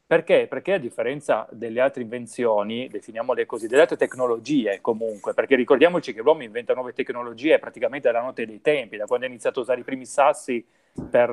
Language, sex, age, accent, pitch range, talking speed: Italian, male, 30-49, native, 125-205 Hz, 185 wpm